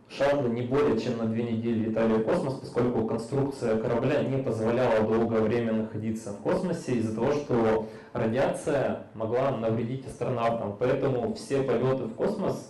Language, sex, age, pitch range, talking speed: Russian, male, 20-39, 110-130 Hz, 150 wpm